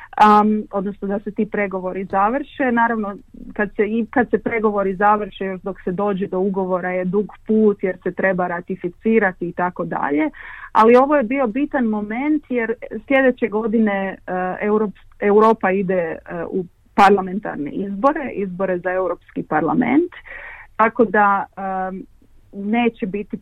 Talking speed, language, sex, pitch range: 125 wpm, Croatian, female, 185-225 Hz